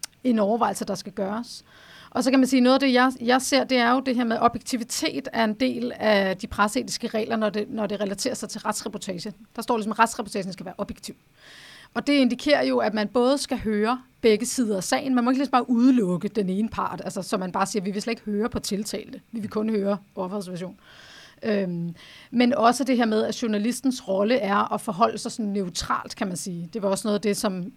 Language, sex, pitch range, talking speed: Danish, female, 205-245 Hz, 240 wpm